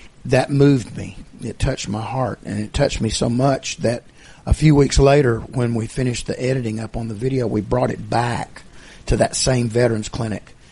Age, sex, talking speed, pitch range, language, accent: 50-69, male, 200 wpm, 110-130 Hz, English, American